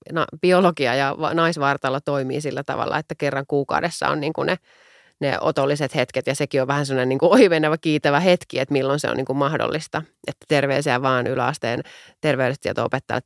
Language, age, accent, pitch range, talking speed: Finnish, 30-49, native, 130-165 Hz, 160 wpm